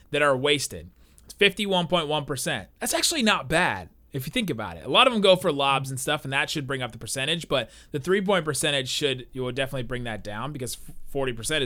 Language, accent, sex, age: English, American, male, 30-49